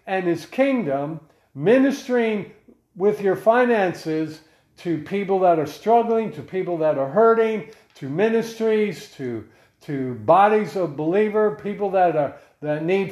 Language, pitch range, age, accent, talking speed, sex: English, 155-215 Hz, 50-69, American, 135 wpm, male